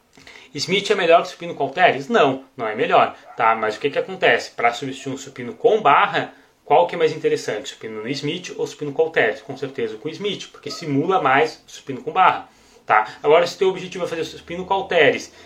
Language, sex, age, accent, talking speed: Portuguese, male, 20-39, Brazilian, 220 wpm